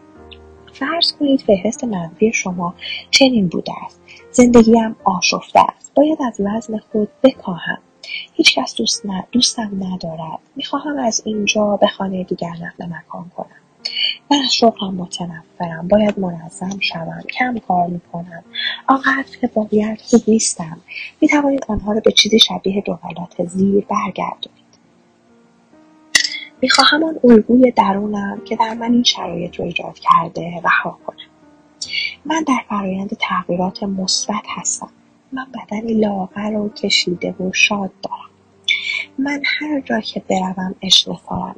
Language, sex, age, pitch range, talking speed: Persian, female, 30-49, 190-250 Hz, 130 wpm